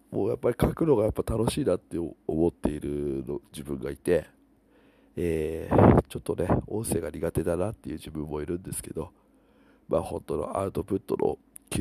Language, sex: Japanese, male